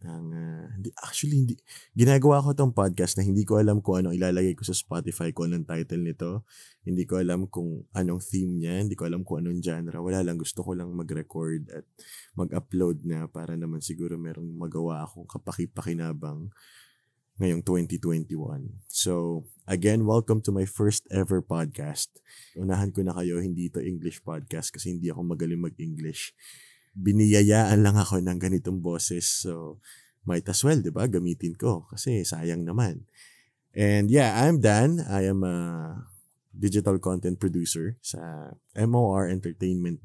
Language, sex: Filipino, male